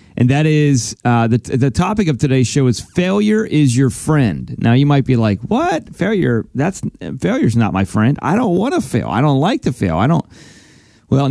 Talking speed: 210 wpm